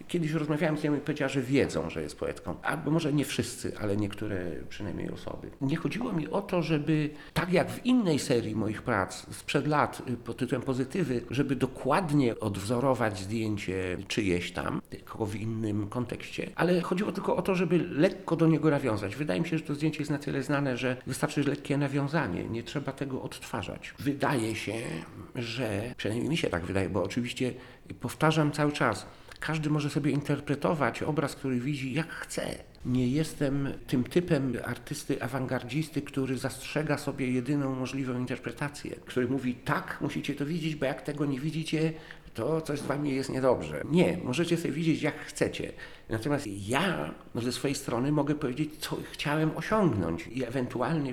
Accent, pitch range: native, 120-155 Hz